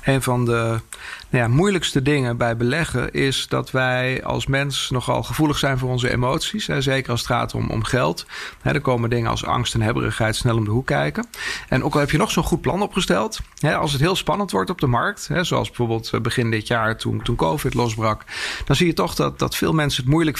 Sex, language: male, English